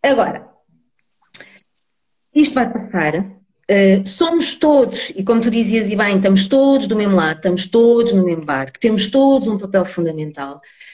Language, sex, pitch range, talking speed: Portuguese, female, 175-235 Hz, 145 wpm